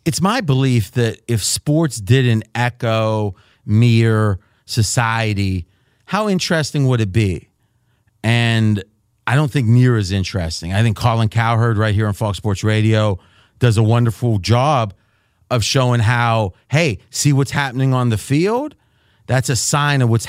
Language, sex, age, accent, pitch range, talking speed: English, male, 40-59, American, 110-160 Hz, 150 wpm